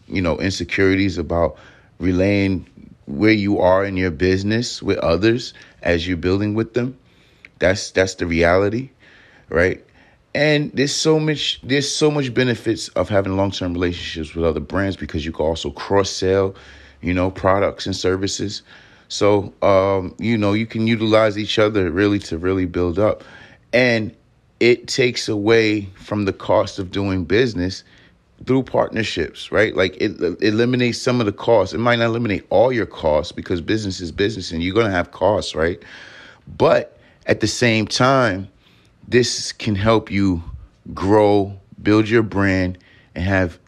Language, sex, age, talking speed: English, male, 30-49, 155 wpm